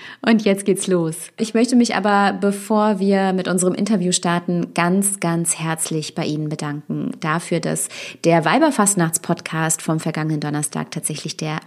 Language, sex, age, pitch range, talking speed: German, female, 30-49, 165-200 Hz, 155 wpm